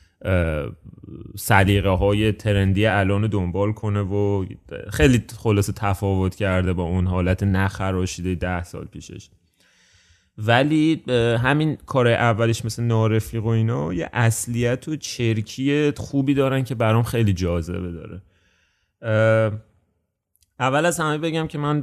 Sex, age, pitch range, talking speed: male, 30-49, 90-120 Hz, 120 wpm